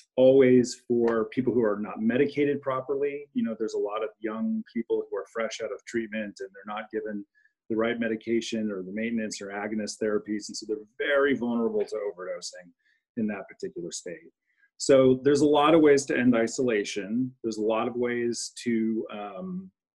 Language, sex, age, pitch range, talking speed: English, male, 30-49, 105-145 Hz, 185 wpm